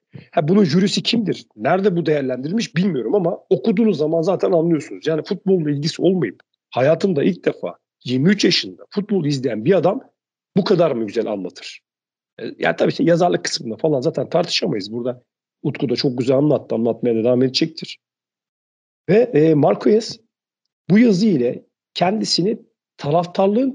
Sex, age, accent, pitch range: male, 50-69, native, 135-190 Hz